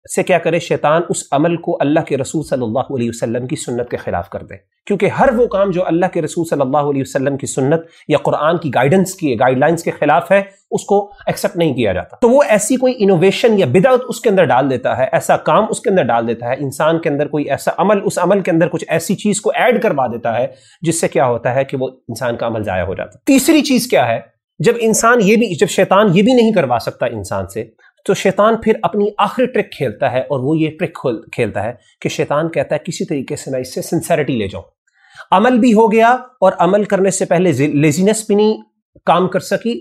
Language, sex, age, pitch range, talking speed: Urdu, male, 30-49, 150-210 Hz, 245 wpm